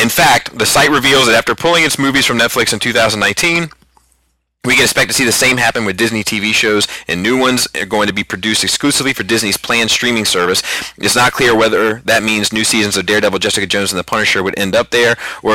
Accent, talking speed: American, 230 wpm